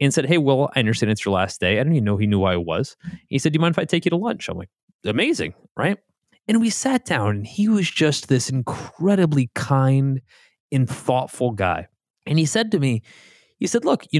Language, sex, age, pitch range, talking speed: English, male, 30-49, 110-160 Hz, 240 wpm